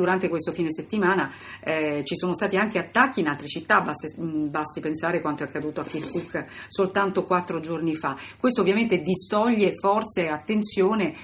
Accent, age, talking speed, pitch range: native, 40-59, 165 wpm, 155-190 Hz